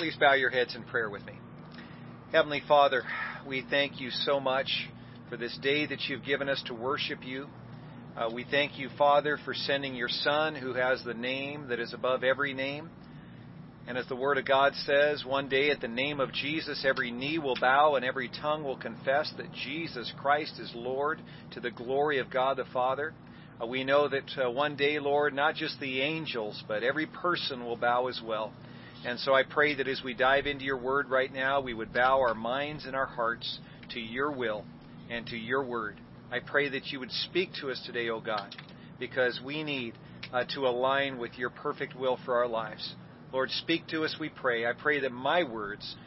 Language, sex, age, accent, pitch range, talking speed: English, male, 40-59, American, 125-145 Hz, 210 wpm